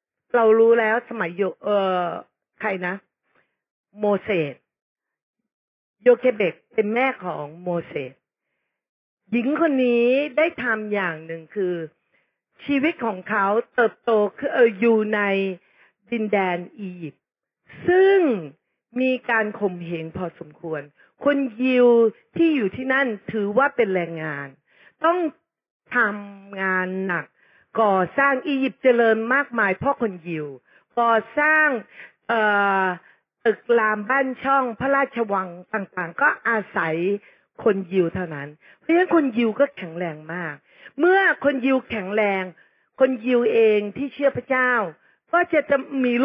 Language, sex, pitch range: Thai, female, 190-260 Hz